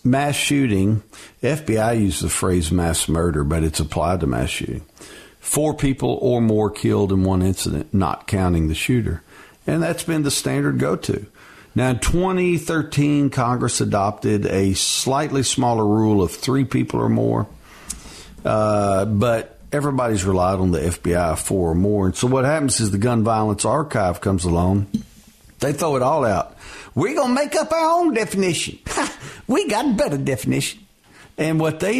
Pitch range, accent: 95-140 Hz, American